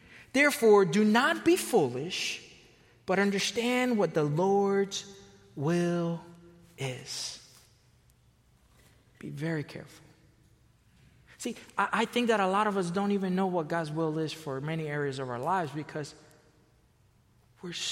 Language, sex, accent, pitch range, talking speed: English, male, American, 155-200 Hz, 130 wpm